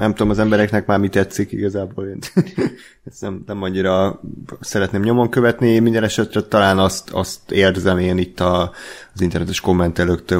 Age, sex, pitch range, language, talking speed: 30-49, male, 90-115 Hz, Hungarian, 165 wpm